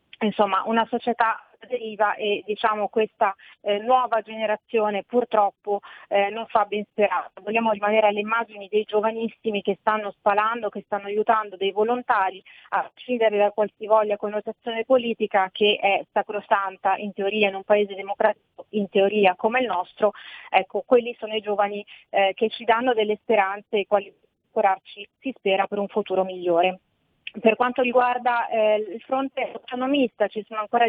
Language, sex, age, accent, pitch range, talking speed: Italian, female, 30-49, native, 205-235 Hz, 155 wpm